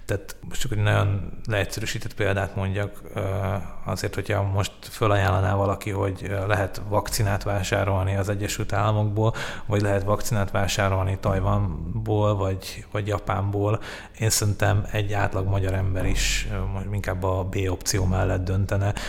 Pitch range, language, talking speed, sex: 95-110 Hz, Hungarian, 120 wpm, male